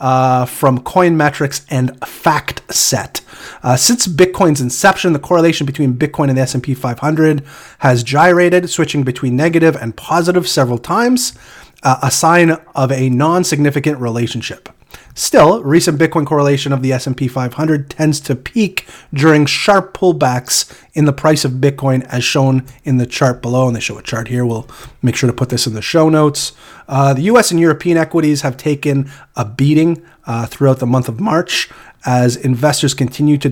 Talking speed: 175 wpm